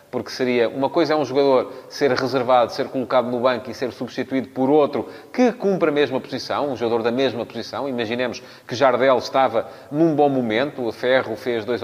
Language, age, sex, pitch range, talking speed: Portuguese, 30-49, male, 115-155 Hz, 200 wpm